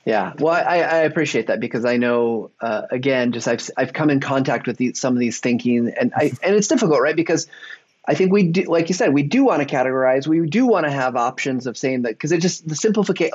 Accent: American